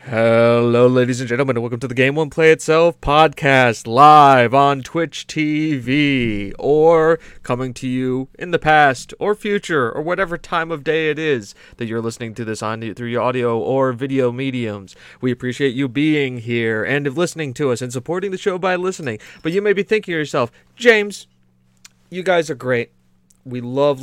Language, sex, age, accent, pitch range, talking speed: English, male, 30-49, American, 110-165 Hz, 185 wpm